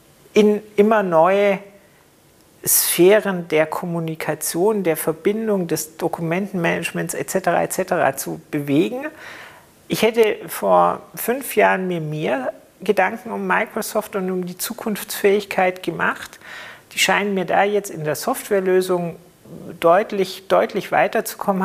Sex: male